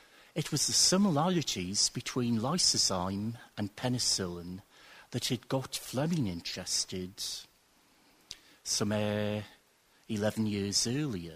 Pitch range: 100-130 Hz